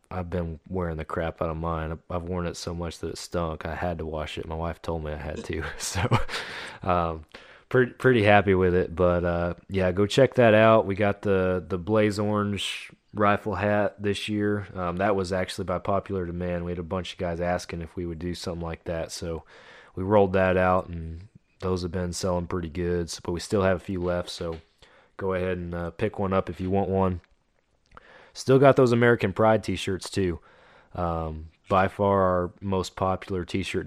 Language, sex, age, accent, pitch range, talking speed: English, male, 30-49, American, 85-100 Hz, 210 wpm